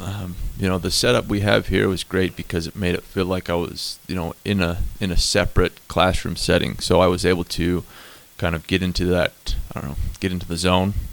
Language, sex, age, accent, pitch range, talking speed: English, male, 30-49, American, 85-95 Hz, 235 wpm